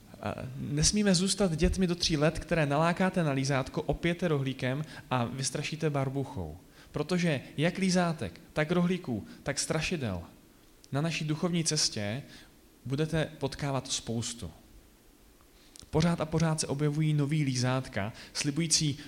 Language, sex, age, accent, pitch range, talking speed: Czech, male, 30-49, native, 125-155 Hz, 115 wpm